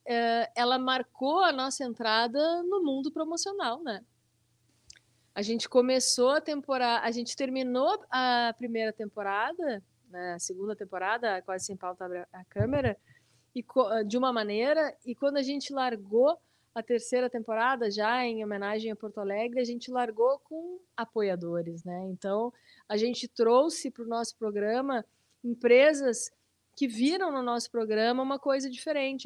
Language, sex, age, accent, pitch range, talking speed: Portuguese, female, 20-39, Brazilian, 190-245 Hz, 145 wpm